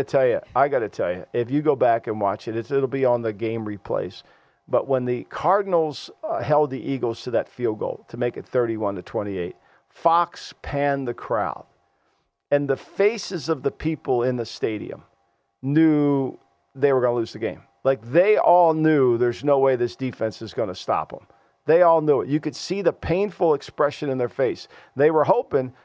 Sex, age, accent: male, 50-69, American